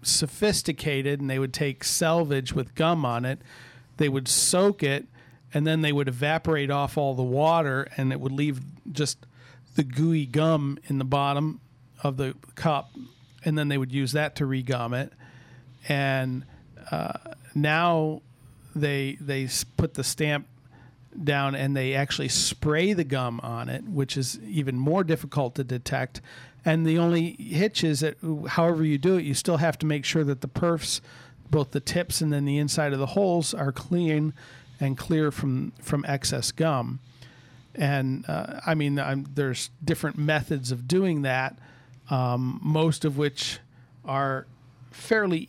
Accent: American